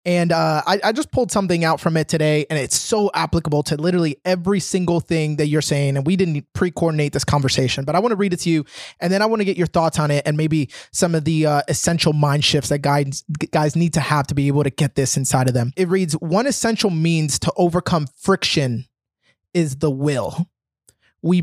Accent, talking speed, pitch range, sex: American, 230 wpm, 150-185 Hz, male